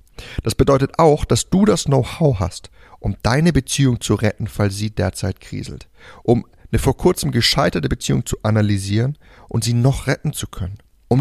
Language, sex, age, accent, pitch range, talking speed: German, male, 30-49, German, 105-135 Hz, 170 wpm